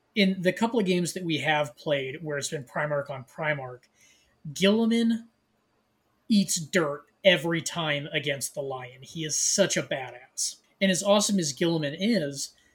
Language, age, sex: English, 20-39, male